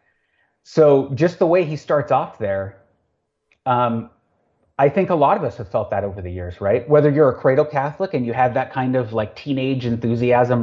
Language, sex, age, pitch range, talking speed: English, male, 30-49, 115-160 Hz, 205 wpm